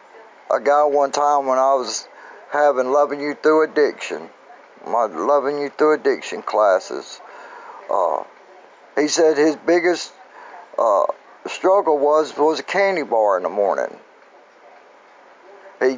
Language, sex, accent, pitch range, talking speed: English, male, American, 145-185 Hz, 130 wpm